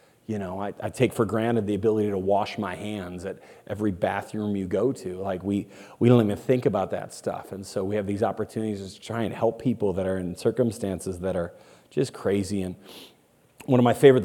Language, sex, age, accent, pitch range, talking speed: English, male, 30-49, American, 105-130 Hz, 220 wpm